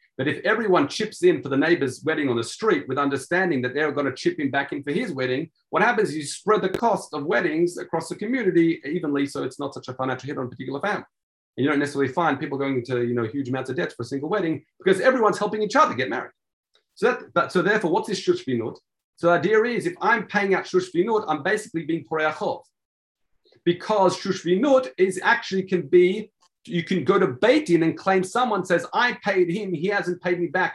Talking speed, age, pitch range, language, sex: 230 wpm, 40-59, 130-185 Hz, English, male